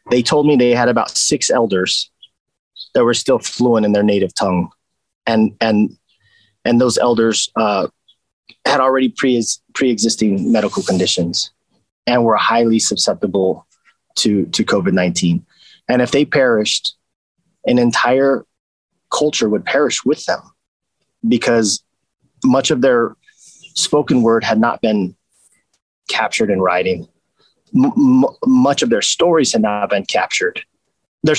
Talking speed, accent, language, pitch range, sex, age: 130 wpm, American, English, 105-140 Hz, male, 30-49